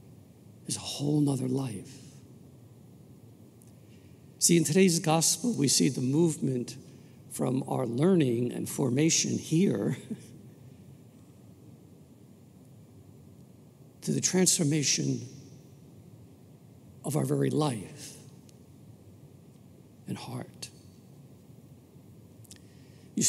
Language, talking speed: English, 70 wpm